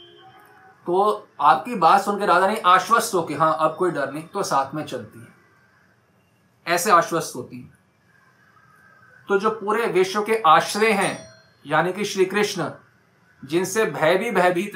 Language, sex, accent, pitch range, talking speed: Hindi, male, native, 160-210 Hz, 155 wpm